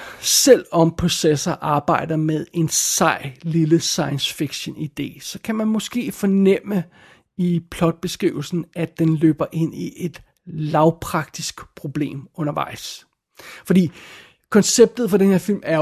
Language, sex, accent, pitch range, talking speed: Danish, male, native, 155-185 Hz, 120 wpm